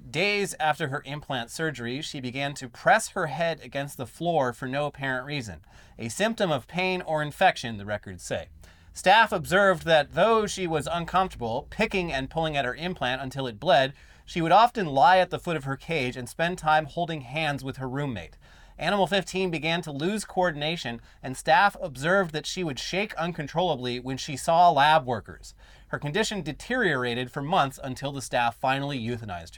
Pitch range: 130-180 Hz